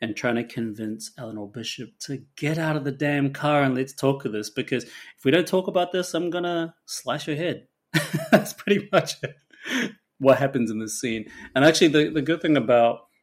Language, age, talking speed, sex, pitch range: English, 30-49, 210 wpm, male, 105-135 Hz